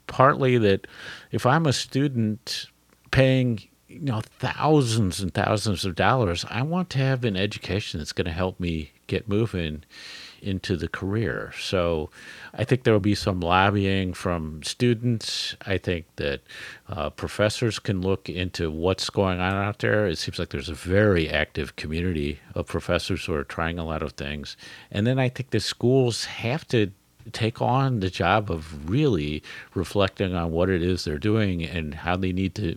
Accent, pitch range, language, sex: American, 85-110 Hz, English, male